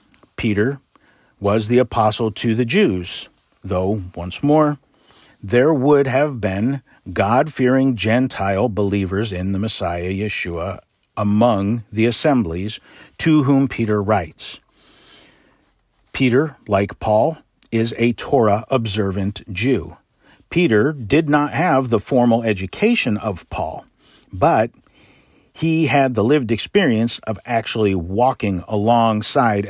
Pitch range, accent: 100-125 Hz, American